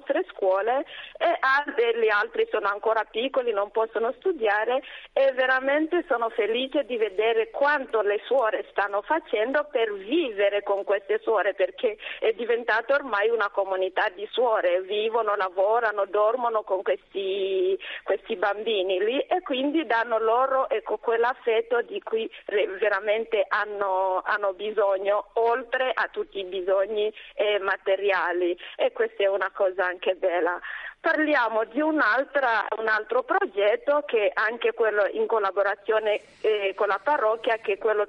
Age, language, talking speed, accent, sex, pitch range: 40-59, Italian, 125 wpm, native, female, 205-310 Hz